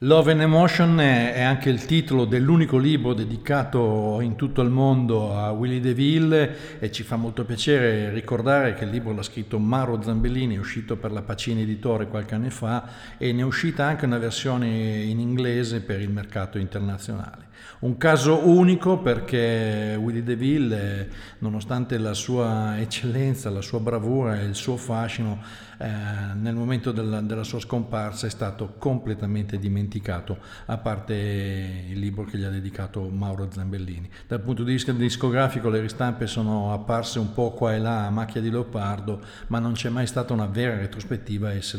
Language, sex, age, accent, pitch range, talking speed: Italian, male, 50-69, native, 105-125 Hz, 170 wpm